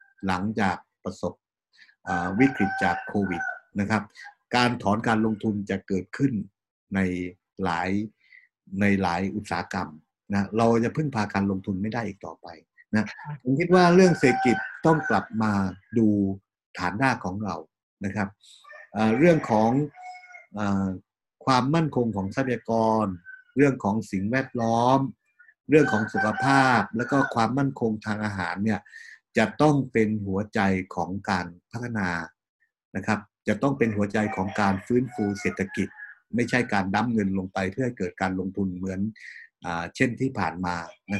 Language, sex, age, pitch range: Thai, male, 60-79, 95-130 Hz